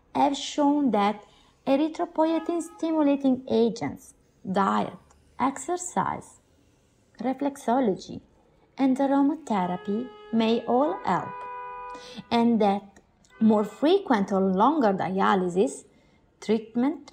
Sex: female